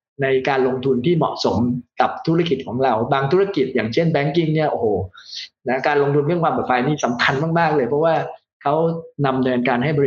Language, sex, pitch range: Thai, male, 125-150 Hz